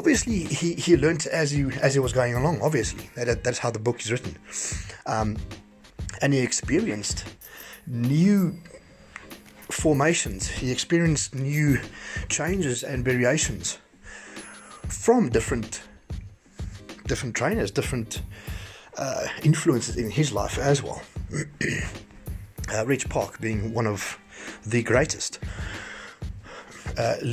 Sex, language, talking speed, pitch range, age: male, English, 115 wpm, 105-140 Hz, 30-49